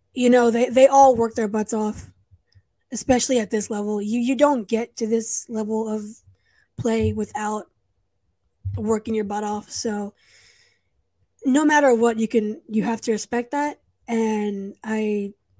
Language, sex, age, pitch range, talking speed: English, female, 20-39, 210-245 Hz, 150 wpm